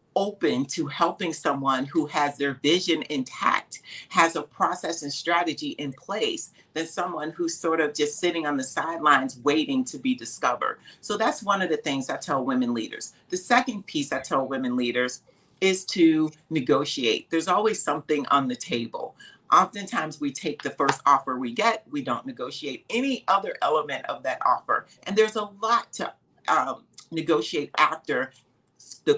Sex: female